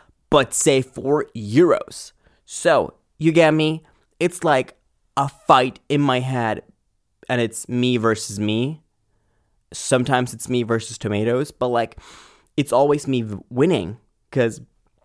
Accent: American